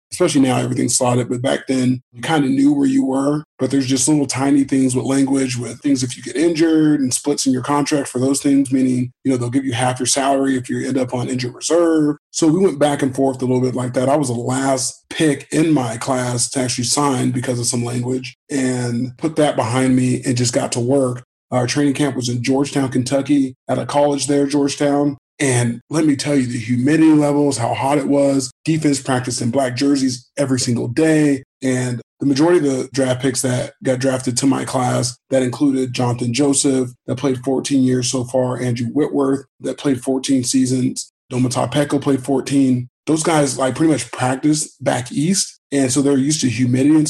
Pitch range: 125-145 Hz